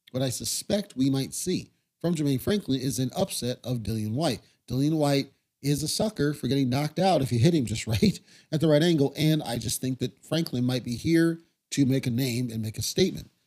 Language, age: English, 40-59